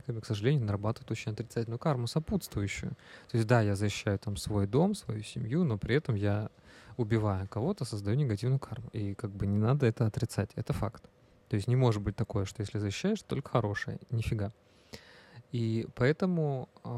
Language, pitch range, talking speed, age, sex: Russian, 100-125 Hz, 175 wpm, 20-39, male